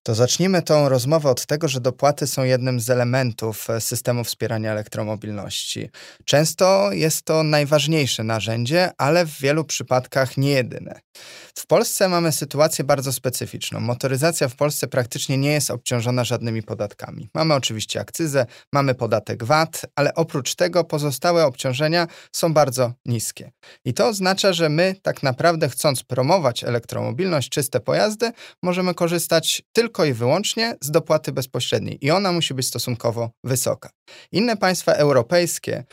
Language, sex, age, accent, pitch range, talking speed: Polish, male, 20-39, native, 125-165 Hz, 140 wpm